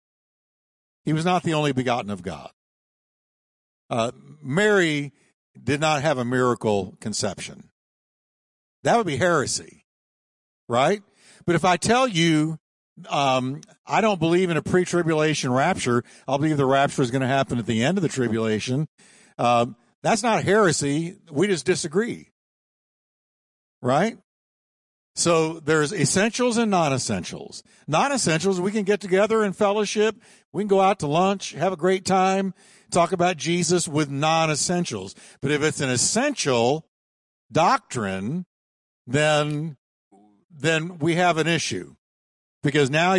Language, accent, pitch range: English, American, 135-185 Hz